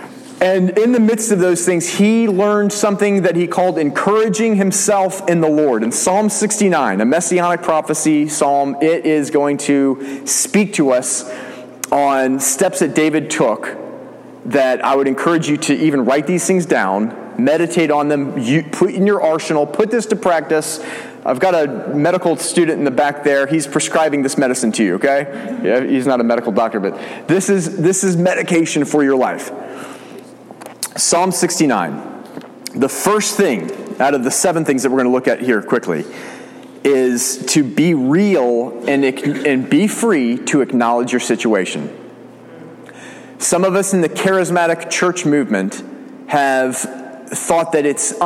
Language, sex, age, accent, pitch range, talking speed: English, male, 30-49, American, 135-185 Hz, 165 wpm